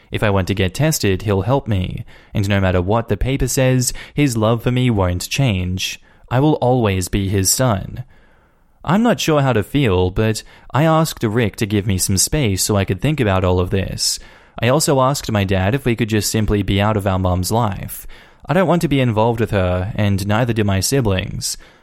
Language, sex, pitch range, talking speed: English, male, 100-130 Hz, 220 wpm